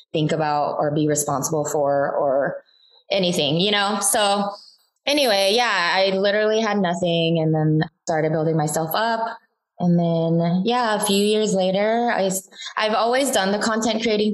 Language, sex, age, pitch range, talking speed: English, female, 20-39, 160-210 Hz, 155 wpm